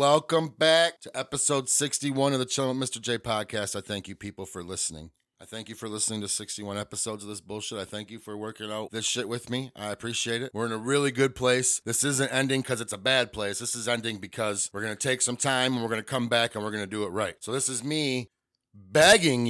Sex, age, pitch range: male, 30-49, 110-135 Hz